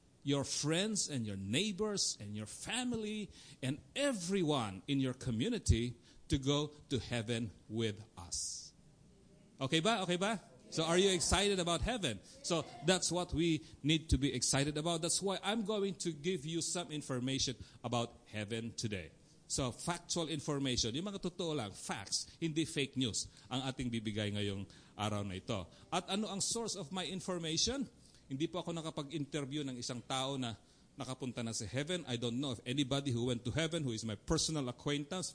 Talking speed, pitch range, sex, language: 150 wpm, 115-165 Hz, male, English